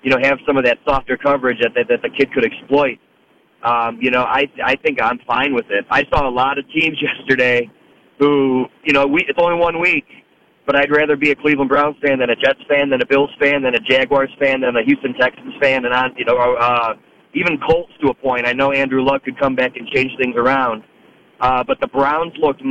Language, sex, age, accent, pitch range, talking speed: English, male, 30-49, American, 125-150 Hz, 240 wpm